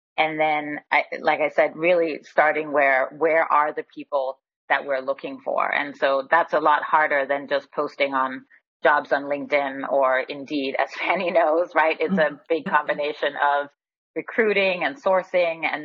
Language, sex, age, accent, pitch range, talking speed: English, female, 30-49, American, 140-170 Hz, 165 wpm